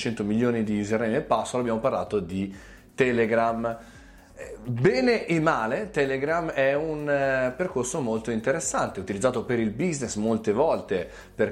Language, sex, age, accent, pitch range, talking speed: Italian, male, 30-49, native, 100-130 Hz, 135 wpm